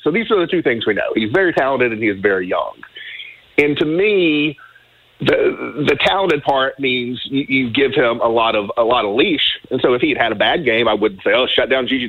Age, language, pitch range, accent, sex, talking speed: 40-59, English, 120-165 Hz, American, male, 255 wpm